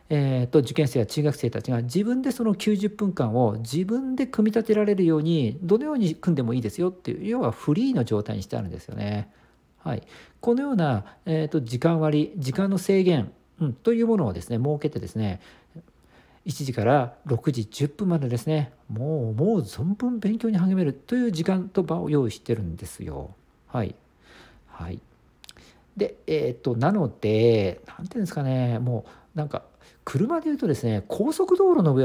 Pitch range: 110-185 Hz